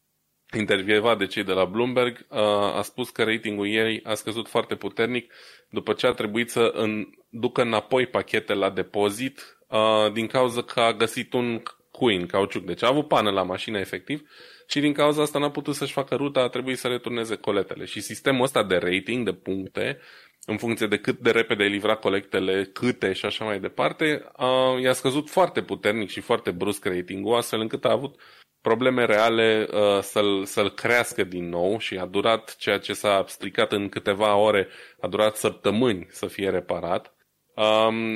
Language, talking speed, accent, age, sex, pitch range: Romanian, 180 wpm, native, 20-39, male, 100-125 Hz